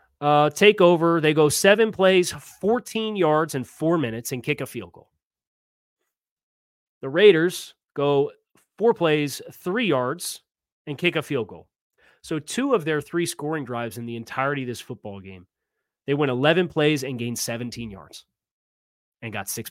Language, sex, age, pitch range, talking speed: English, male, 30-49, 120-170 Hz, 165 wpm